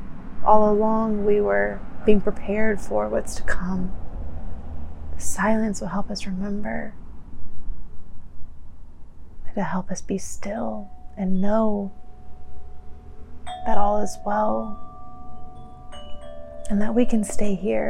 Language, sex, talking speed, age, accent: English, female, 115 wpm, 20-39, American